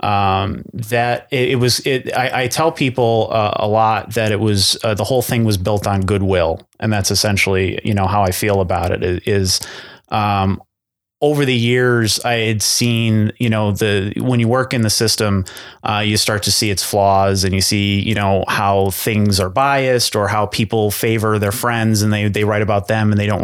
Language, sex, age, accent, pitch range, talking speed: English, male, 30-49, American, 100-115 Hz, 210 wpm